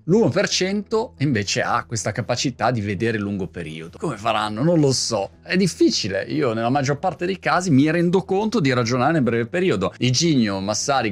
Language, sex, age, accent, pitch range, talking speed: Italian, male, 30-49, native, 110-175 Hz, 180 wpm